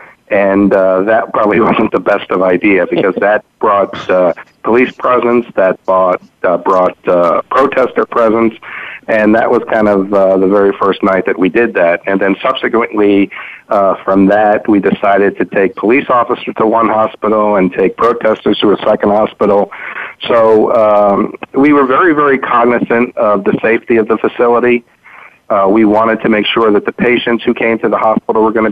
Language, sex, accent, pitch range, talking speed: English, male, American, 95-115 Hz, 185 wpm